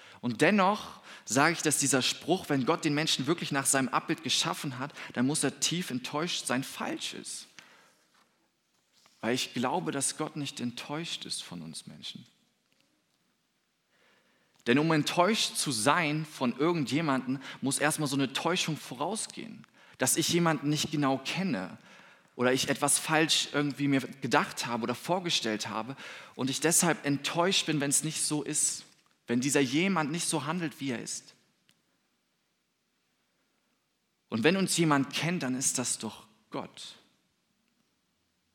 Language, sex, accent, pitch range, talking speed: German, male, German, 130-160 Hz, 150 wpm